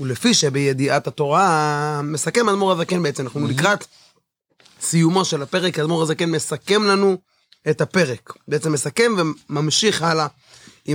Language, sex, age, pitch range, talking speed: Hebrew, male, 20-39, 145-190 Hz, 120 wpm